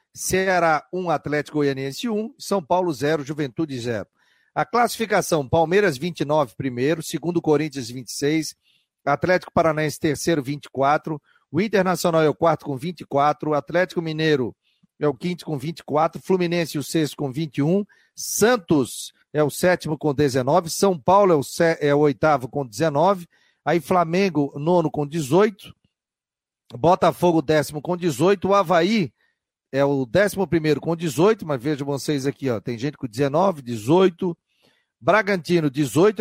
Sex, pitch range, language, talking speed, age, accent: male, 145-185 Hz, Portuguese, 140 wpm, 50-69, Brazilian